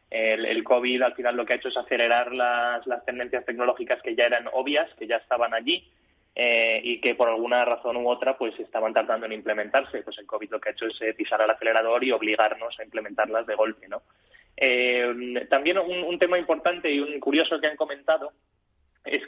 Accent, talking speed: Spanish, 210 wpm